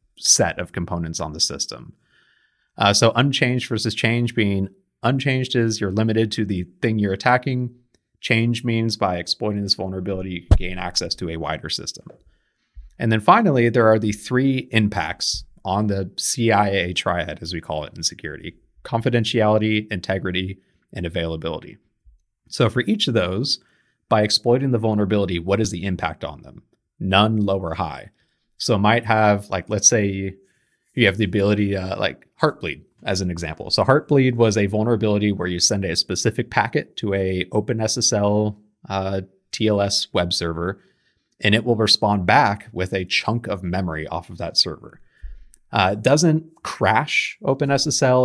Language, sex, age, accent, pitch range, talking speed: English, male, 30-49, American, 95-115 Hz, 160 wpm